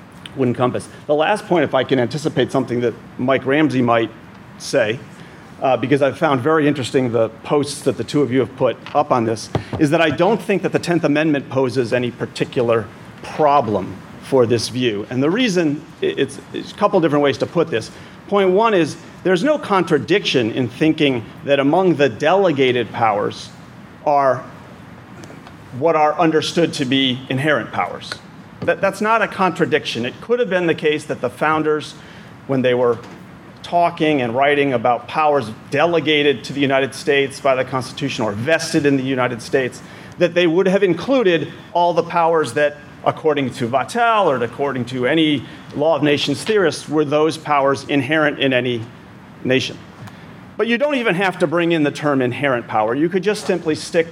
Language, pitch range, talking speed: English, 130-165 Hz, 180 wpm